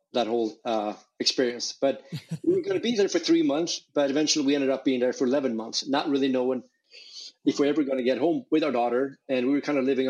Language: English